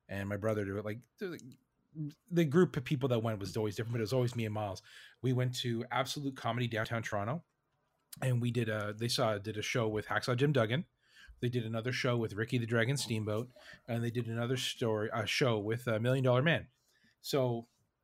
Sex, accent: male, American